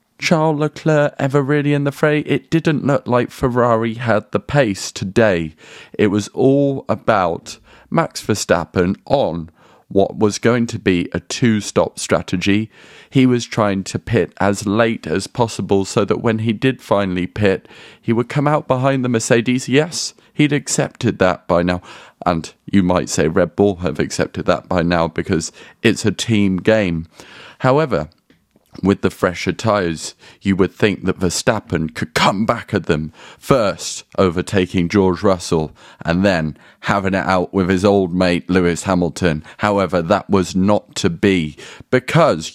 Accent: British